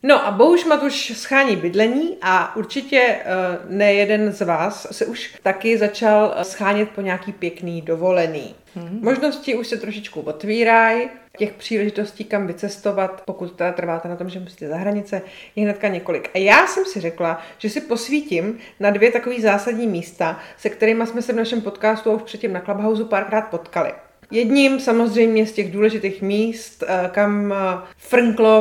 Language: Czech